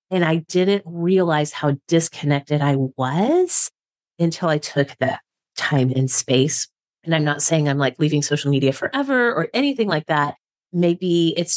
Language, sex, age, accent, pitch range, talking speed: English, female, 30-49, American, 145-195 Hz, 160 wpm